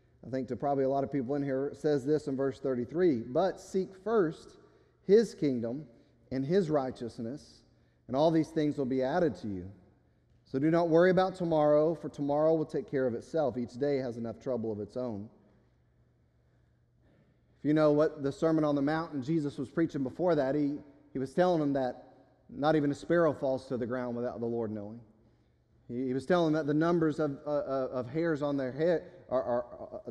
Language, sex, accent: English, male, American